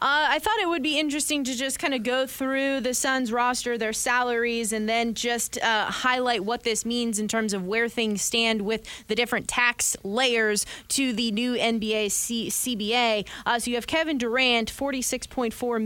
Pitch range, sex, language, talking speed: 210-245 Hz, female, English, 185 wpm